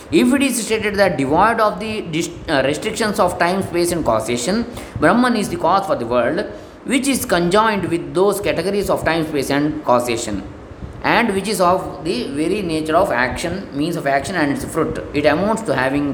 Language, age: Kannada, 20-39